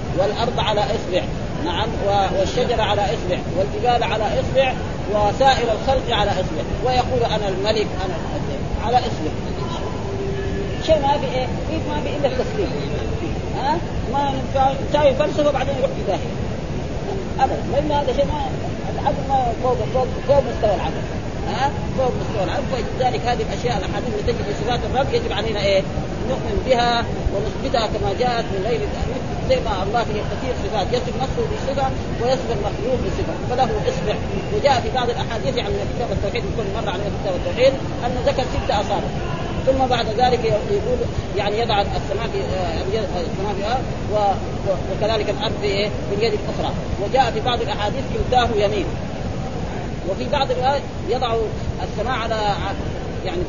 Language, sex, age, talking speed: Arabic, female, 30-49, 145 wpm